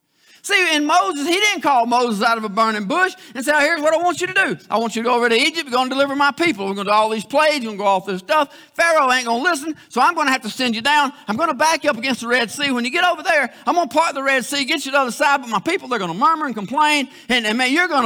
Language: English